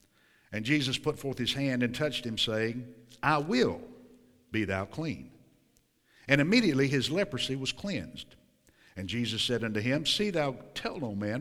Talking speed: 165 wpm